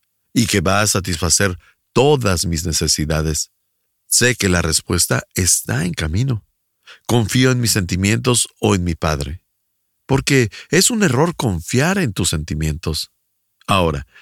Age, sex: 50-69, male